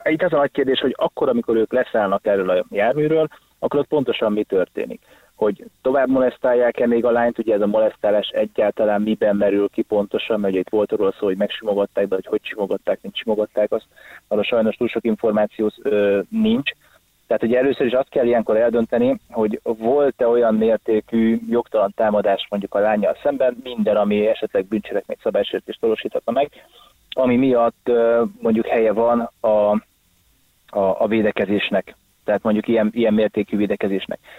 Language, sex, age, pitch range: Hungarian, male, 20-39, 105-125 Hz